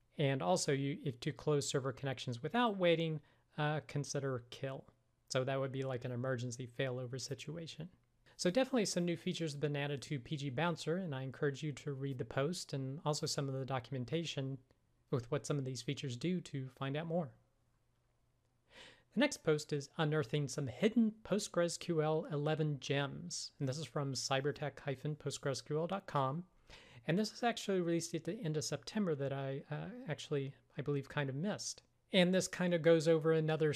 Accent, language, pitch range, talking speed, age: American, English, 135-160 Hz, 175 wpm, 40-59